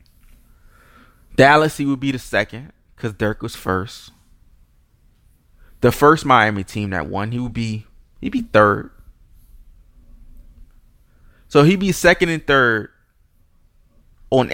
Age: 20-39